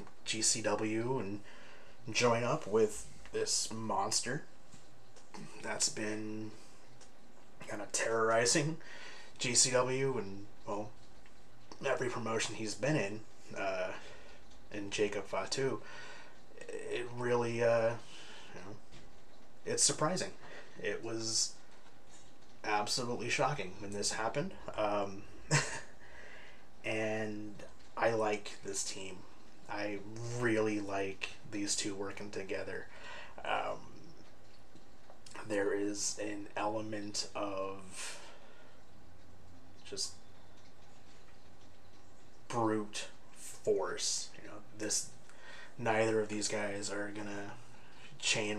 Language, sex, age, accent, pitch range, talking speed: English, male, 30-49, American, 100-115 Hz, 90 wpm